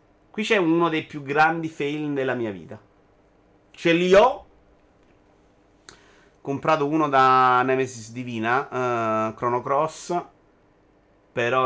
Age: 30-49